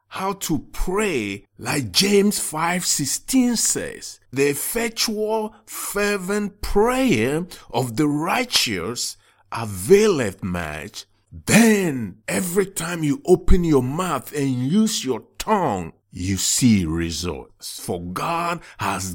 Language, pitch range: English, 95-150 Hz